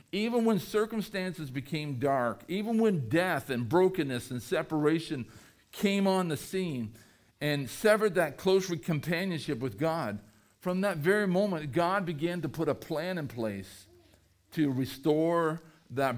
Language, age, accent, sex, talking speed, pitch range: English, 50-69, American, male, 140 wpm, 115-175 Hz